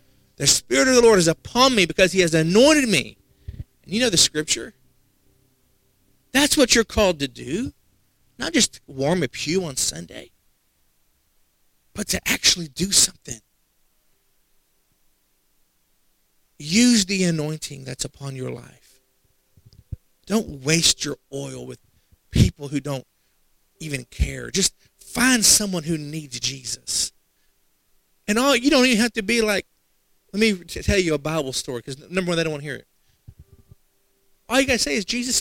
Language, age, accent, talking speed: English, 50-69, American, 155 wpm